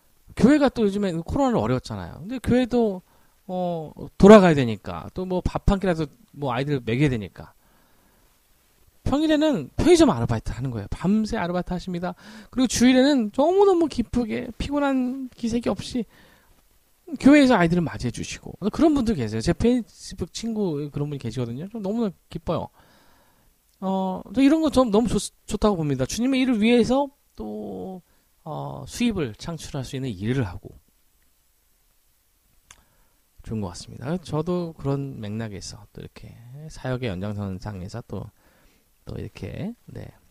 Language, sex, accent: Korean, male, native